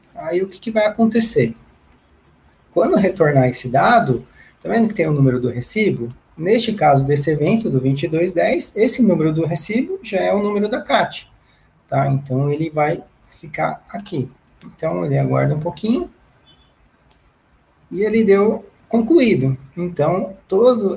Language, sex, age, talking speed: Portuguese, male, 20-39, 145 wpm